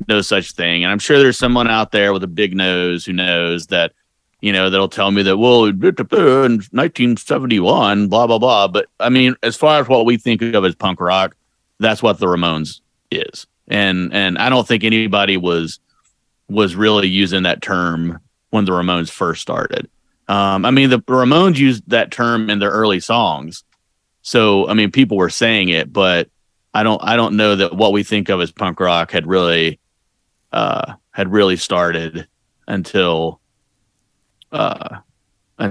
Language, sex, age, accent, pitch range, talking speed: English, male, 30-49, American, 90-115 Hz, 175 wpm